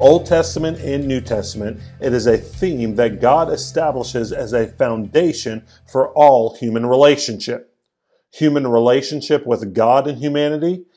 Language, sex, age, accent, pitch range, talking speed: English, male, 50-69, American, 115-145 Hz, 135 wpm